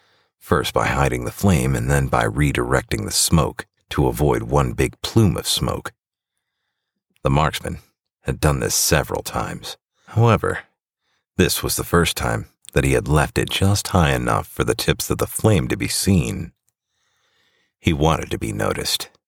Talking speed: 165 wpm